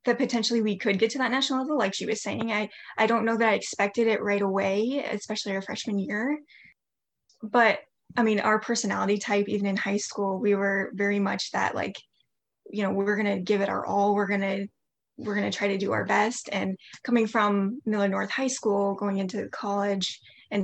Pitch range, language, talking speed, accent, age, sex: 200-225 Hz, English, 215 wpm, American, 10-29, female